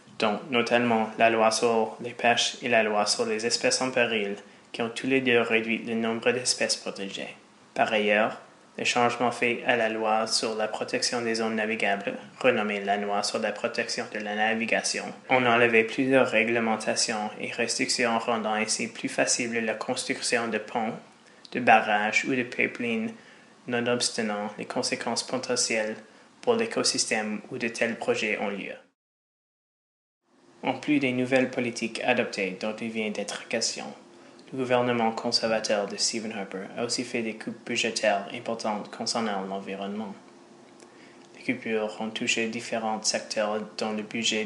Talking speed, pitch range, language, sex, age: 155 wpm, 110-120 Hz, English, male, 20-39